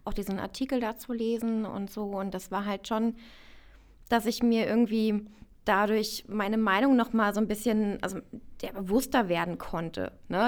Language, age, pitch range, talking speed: German, 20-39, 180-220 Hz, 170 wpm